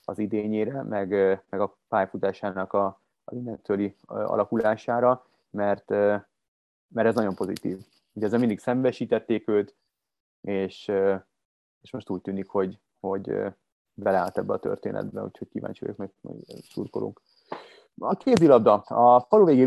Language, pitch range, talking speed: Hungarian, 95-115 Hz, 125 wpm